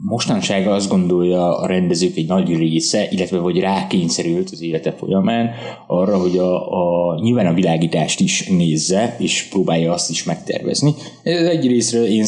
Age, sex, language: 20-39, male, Hungarian